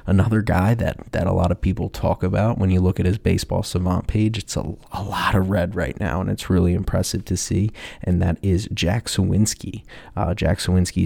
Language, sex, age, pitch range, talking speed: English, male, 20-39, 90-100 Hz, 215 wpm